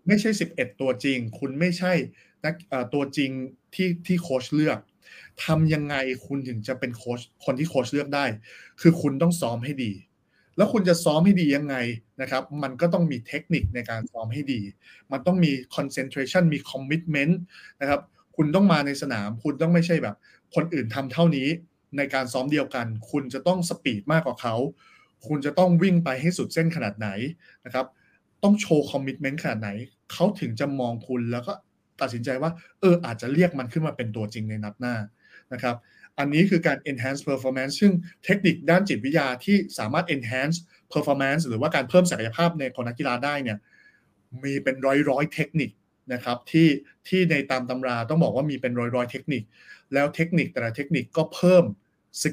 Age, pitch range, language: 20-39, 125-165 Hz, Thai